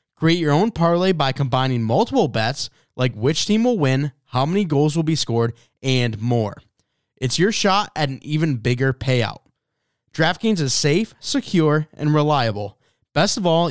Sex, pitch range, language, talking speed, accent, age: male, 120-165 Hz, English, 165 wpm, American, 20-39